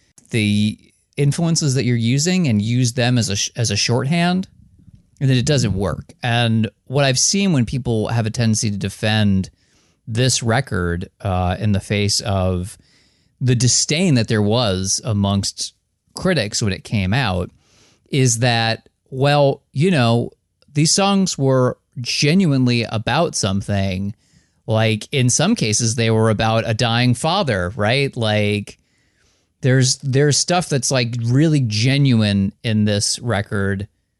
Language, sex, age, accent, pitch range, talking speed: English, male, 30-49, American, 100-125 Hz, 140 wpm